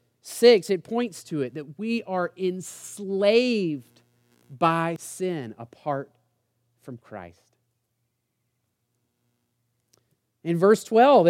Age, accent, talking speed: 30-49, American, 90 wpm